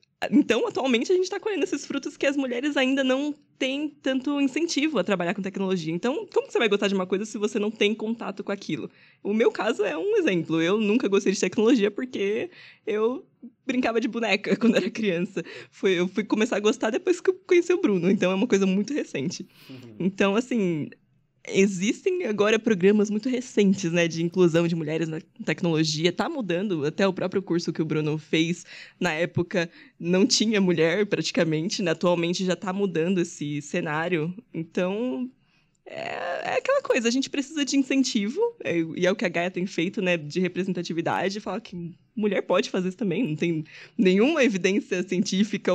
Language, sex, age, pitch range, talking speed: Portuguese, female, 20-39, 175-250 Hz, 190 wpm